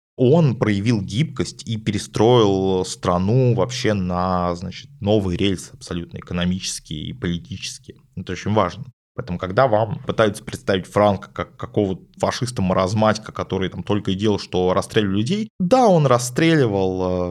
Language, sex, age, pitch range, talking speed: Russian, male, 20-39, 90-120 Hz, 130 wpm